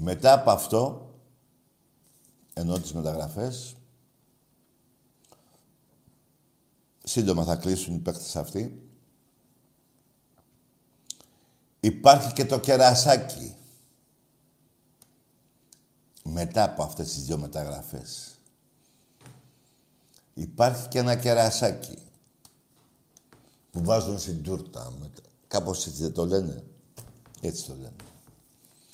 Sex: male